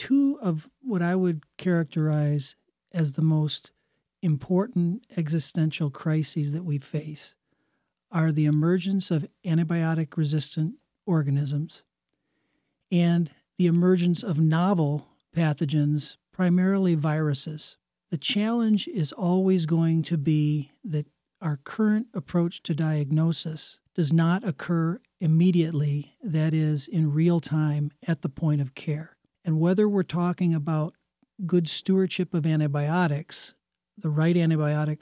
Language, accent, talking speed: English, American, 115 wpm